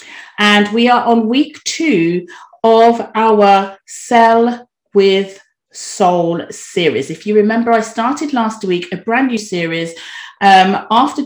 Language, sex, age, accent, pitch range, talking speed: English, female, 40-59, British, 180-240 Hz, 135 wpm